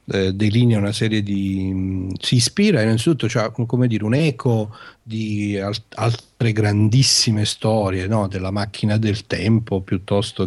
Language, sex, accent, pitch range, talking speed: Italian, male, native, 100-120 Hz, 110 wpm